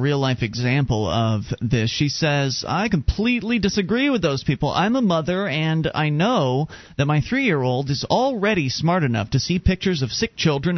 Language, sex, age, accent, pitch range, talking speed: English, male, 40-59, American, 130-190 Hz, 175 wpm